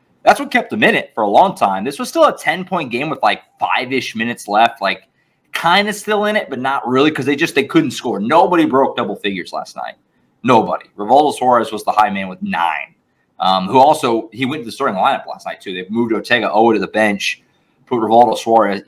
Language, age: English, 20-39